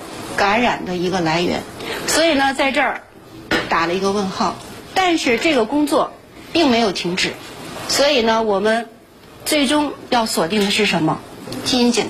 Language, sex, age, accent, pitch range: Chinese, female, 30-49, native, 210-290 Hz